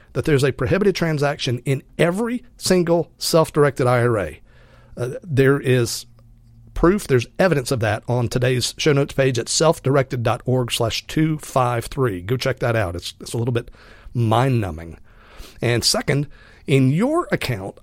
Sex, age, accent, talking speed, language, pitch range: male, 40-59, American, 140 wpm, English, 120-160 Hz